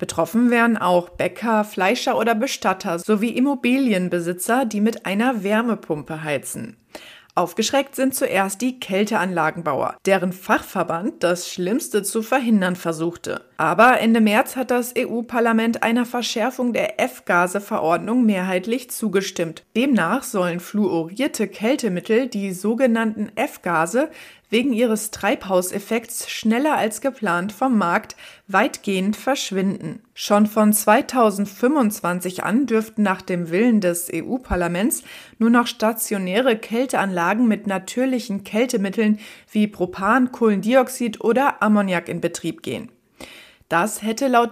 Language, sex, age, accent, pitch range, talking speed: German, female, 30-49, German, 190-245 Hz, 110 wpm